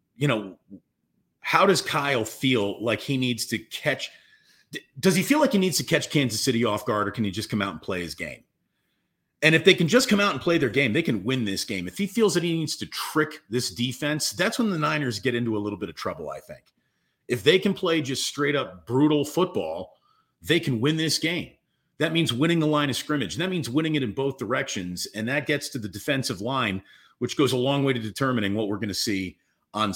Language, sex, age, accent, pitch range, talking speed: English, male, 40-59, American, 120-165 Hz, 240 wpm